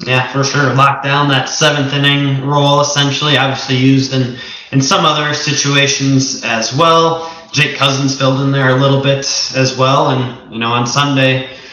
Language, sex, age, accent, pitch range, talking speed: English, male, 20-39, American, 125-140 Hz, 175 wpm